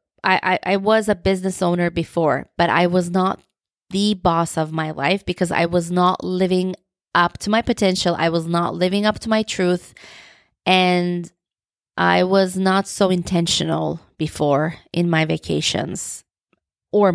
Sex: female